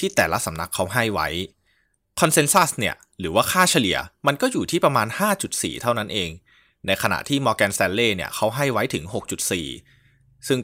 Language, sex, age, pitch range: Thai, male, 20-39, 90-115 Hz